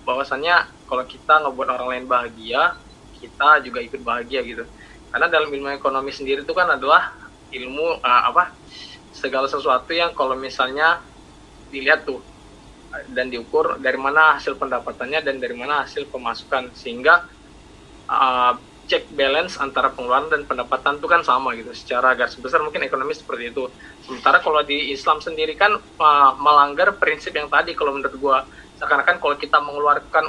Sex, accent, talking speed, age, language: male, native, 155 wpm, 20-39, Indonesian